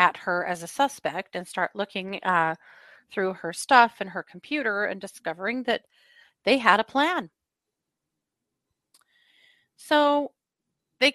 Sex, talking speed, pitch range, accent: female, 130 wpm, 180-275 Hz, American